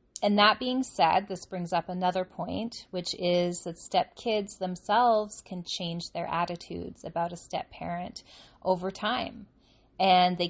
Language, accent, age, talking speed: English, American, 30-49, 145 wpm